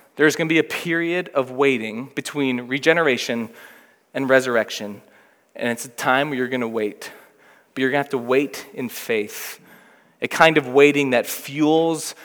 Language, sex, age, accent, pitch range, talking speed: English, male, 20-39, American, 130-155 Hz, 175 wpm